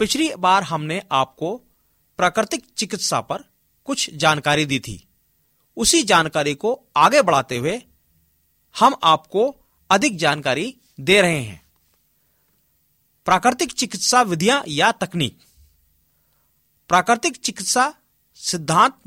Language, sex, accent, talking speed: Hindi, male, native, 100 wpm